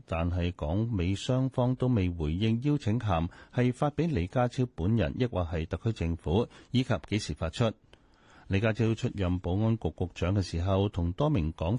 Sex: male